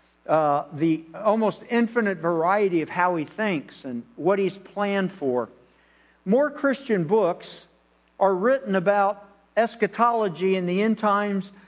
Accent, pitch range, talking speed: American, 175-220 Hz, 130 wpm